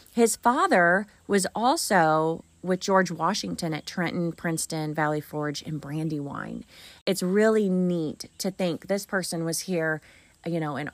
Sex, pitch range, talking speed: female, 165-205 Hz, 145 wpm